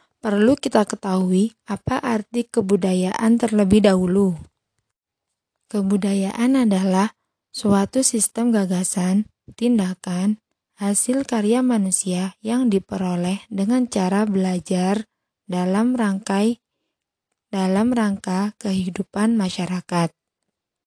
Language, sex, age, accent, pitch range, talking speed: Indonesian, female, 20-39, native, 190-230 Hz, 80 wpm